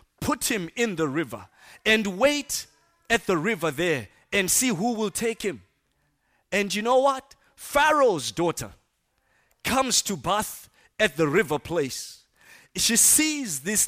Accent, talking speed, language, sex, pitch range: South African, 145 wpm, English, male, 185-285 Hz